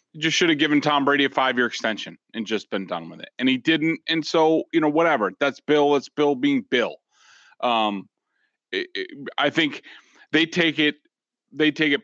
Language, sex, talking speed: English, male, 190 wpm